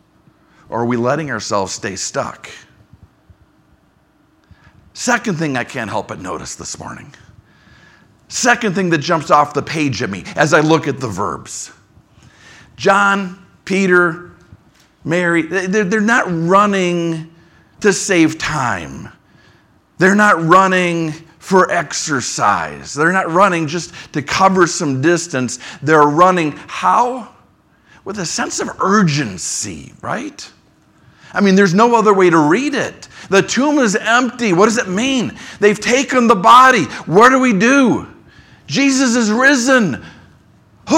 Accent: American